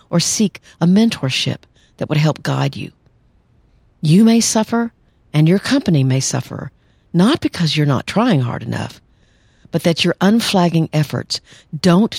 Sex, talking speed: female, 150 wpm